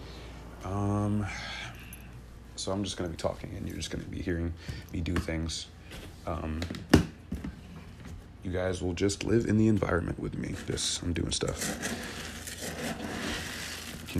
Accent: American